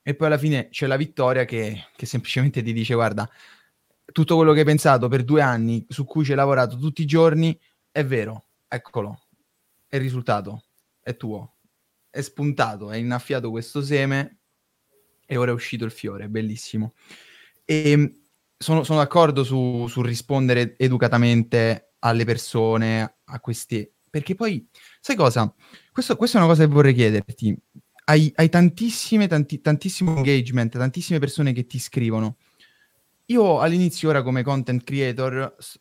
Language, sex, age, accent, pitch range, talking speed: Italian, male, 10-29, native, 115-150 Hz, 155 wpm